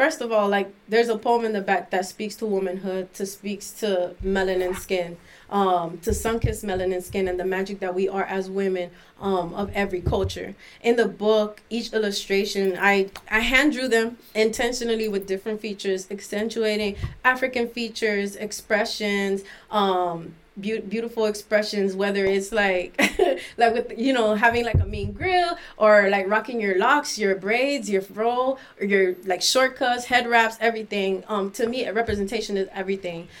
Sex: female